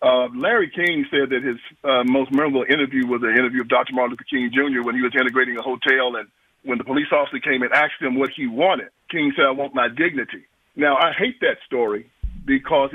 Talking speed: 225 wpm